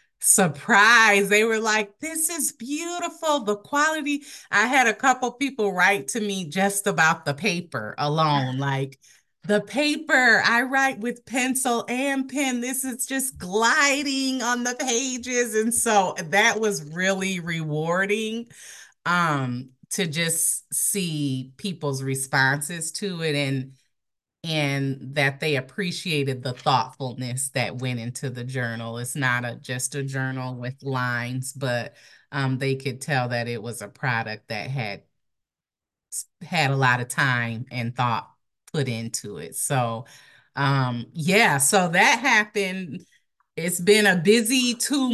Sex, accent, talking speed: female, American, 140 wpm